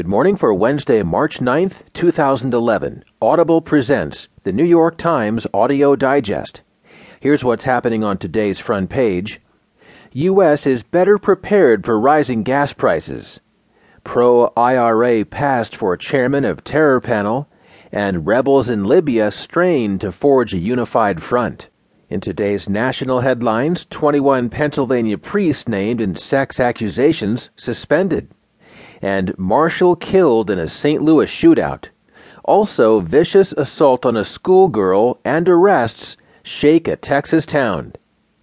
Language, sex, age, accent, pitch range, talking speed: English, male, 40-59, American, 115-155 Hz, 125 wpm